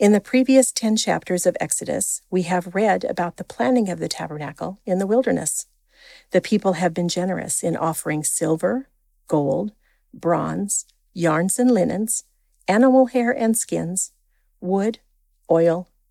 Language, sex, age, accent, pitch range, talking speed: English, female, 50-69, American, 175-225 Hz, 140 wpm